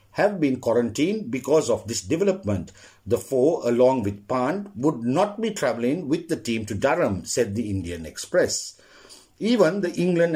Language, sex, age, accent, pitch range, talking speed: English, male, 50-69, Indian, 110-155 Hz, 160 wpm